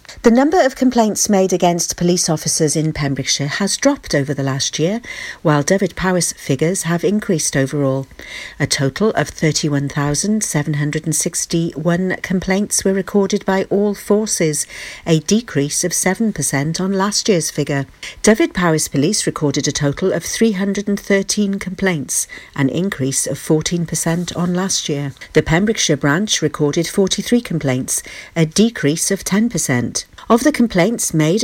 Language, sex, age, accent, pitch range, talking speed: English, female, 50-69, British, 145-200 Hz, 135 wpm